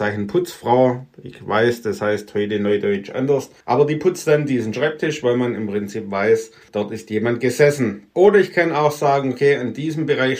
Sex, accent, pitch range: male, German, 110-140 Hz